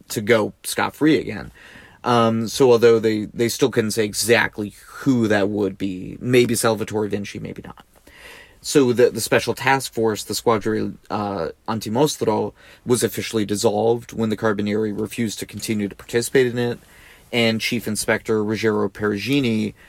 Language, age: English, 30-49